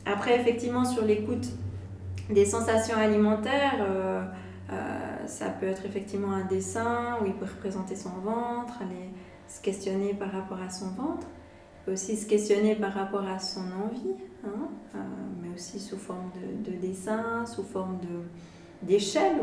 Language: French